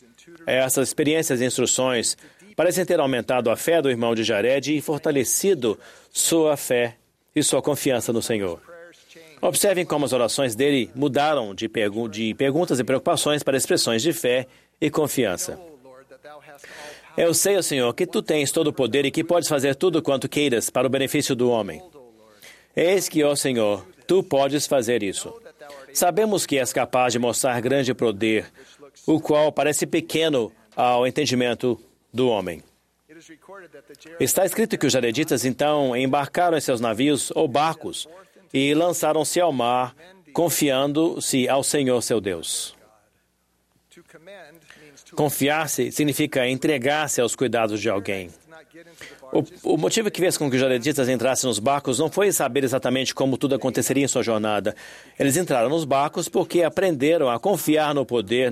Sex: male